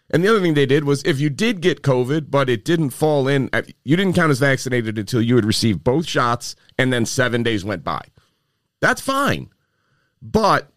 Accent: American